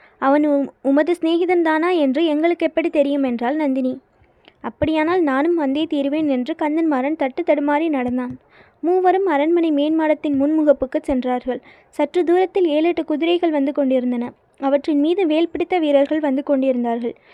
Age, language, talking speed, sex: 20-39, Tamil, 130 wpm, female